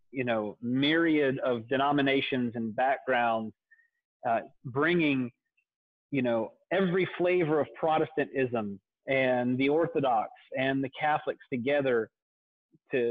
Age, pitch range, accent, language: 30-49, 120-145 Hz, American, English